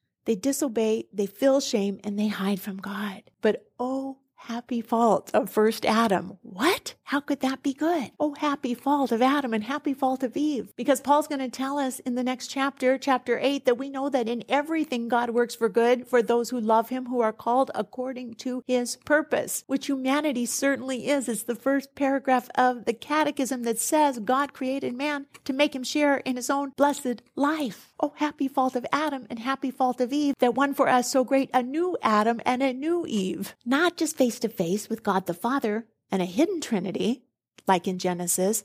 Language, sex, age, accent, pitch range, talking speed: English, female, 50-69, American, 215-275 Hz, 205 wpm